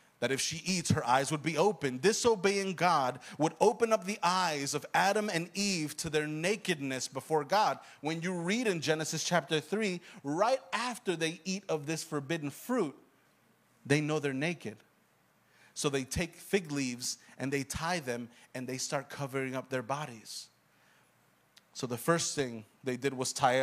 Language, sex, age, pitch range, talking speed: English, male, 30-49, 135-185 Hz, 175 wpm